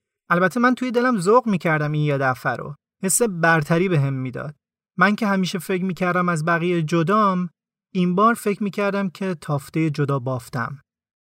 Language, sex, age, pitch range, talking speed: Persian, male, 30-49, 155-195 Hz, 180 wpm